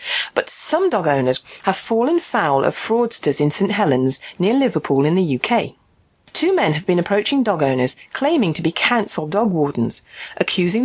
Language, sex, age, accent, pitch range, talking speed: English, female, 40-59, British, 150-225 Hz, 170 wpm